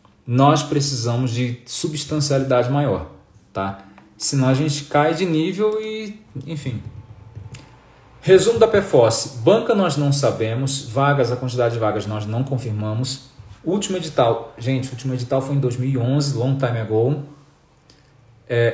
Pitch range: 115-150 Hz